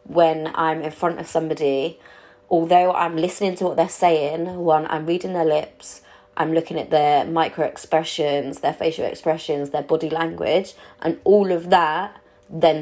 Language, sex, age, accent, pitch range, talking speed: English, female, 20-39, British, 145-170 Hz, 165 wpm